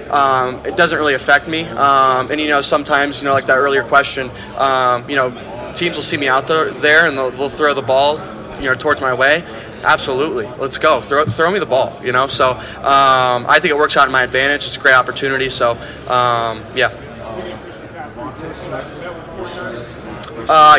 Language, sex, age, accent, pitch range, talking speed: English, male, 20-39, American, 125-145 Hz, 190 wpm